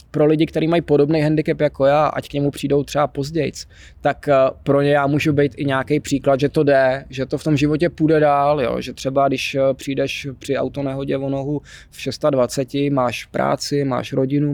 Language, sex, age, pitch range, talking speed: Czech, male, 20-39, 120-145 Hz, 200 wpm